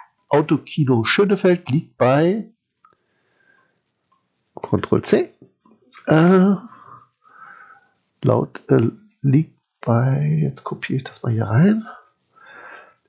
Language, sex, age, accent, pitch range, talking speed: German, male, 60-79, German, 125-190 Hz, 85 wpm